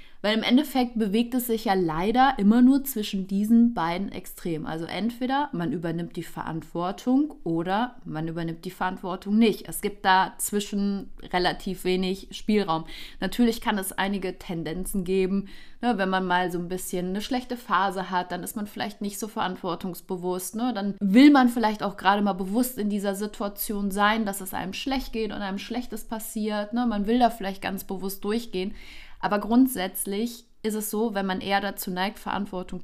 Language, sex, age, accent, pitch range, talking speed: German, female, 30-49, German, 190-225 Hz, 175 wpm